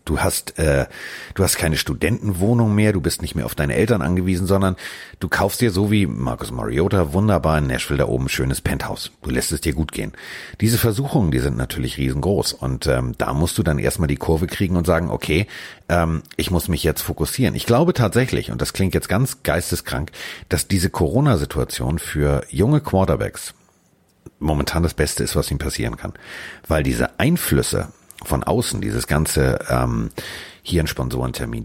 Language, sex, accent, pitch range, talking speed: German, male, German, 75-100 Hz, 180 wpm